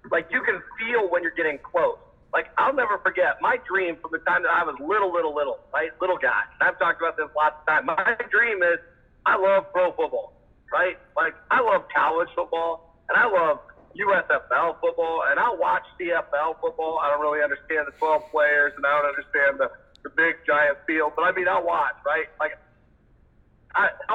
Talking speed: 200 wpm